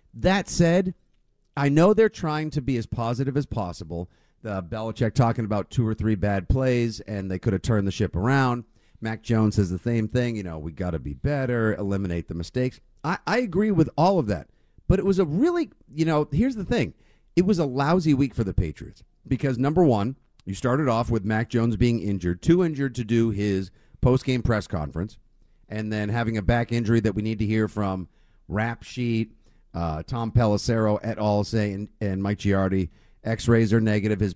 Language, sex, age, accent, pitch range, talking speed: English, male, 50-69, American, 105-135 Hz, 205 wpm